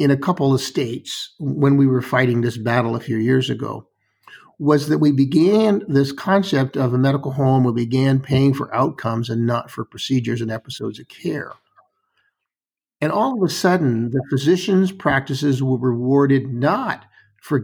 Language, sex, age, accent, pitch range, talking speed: English, male, 50-69, American, 130-185 Hz, 170 wpm